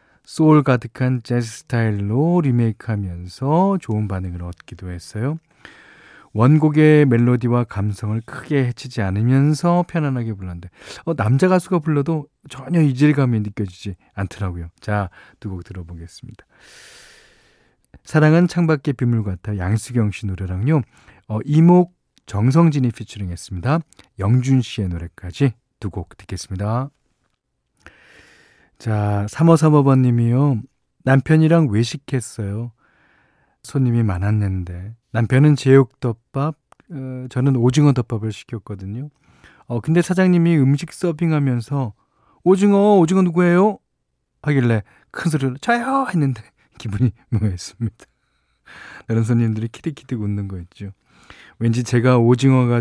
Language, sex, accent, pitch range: Korean, male, native, 105-150 Hz